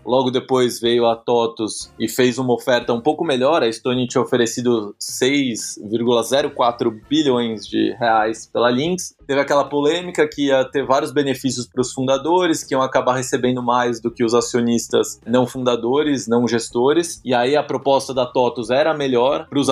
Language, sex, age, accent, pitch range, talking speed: Portuguese, male, 20-39, Brazilian, 120-145 Hz, 170 wpm